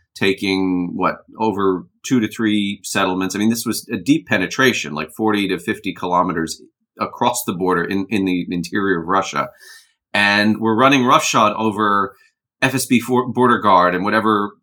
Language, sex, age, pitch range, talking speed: English, male, 30-49, 90-110 Hz, 155 wpm